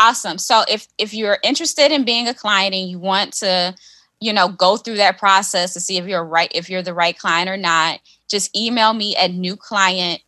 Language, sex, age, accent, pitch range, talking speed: English, female, 20-39, American, 175-195 Hz, 210 wpm